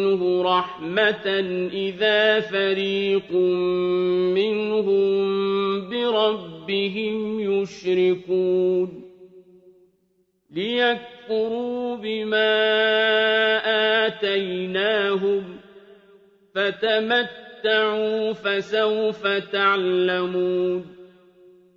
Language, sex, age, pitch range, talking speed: Arabic, male, 40-59, 185-220 Hz, 35 wpm